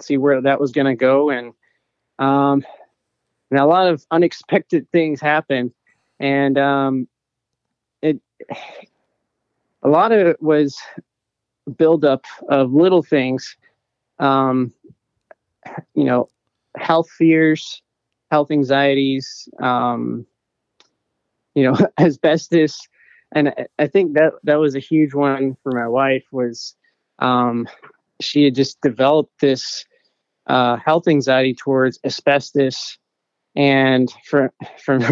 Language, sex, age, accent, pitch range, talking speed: English, male, 20-39, American, 130-150 Hz, 115 wpm